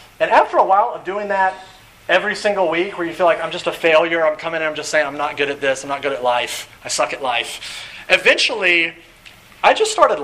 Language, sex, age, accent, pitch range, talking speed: English, male, 30-49, American, 145-205 Hz, 245 wpm